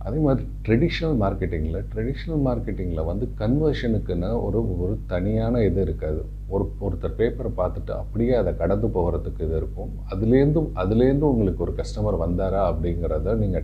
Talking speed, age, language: 135 wpm, 40-59, Tamil